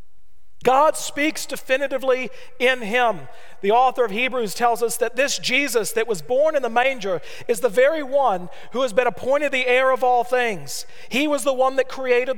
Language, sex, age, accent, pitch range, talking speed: English, male, 40-59, American, 180-265 Hz, 190 wpm